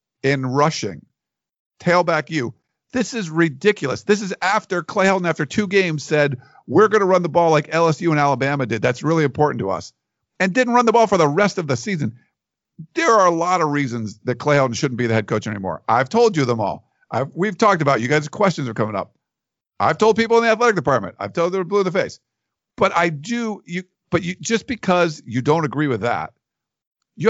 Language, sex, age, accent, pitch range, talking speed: English, male, 50-69, American, 130-185 Hz, 220 wpm